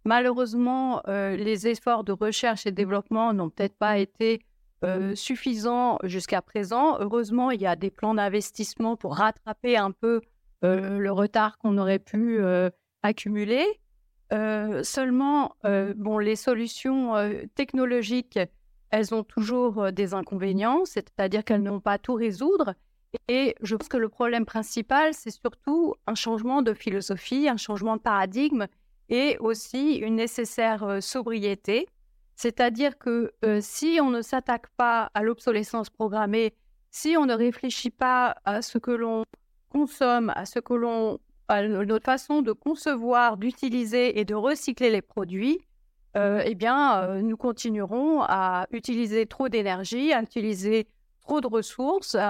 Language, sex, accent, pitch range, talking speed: French, female, French, 205-245 Hz, 145 wpm